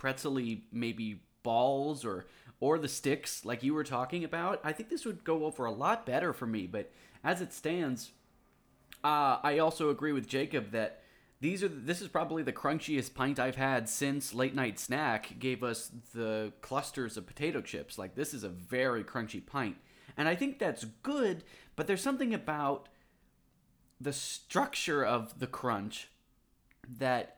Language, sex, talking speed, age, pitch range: English, male, 170 wpm, 30-49, 115-155 Hz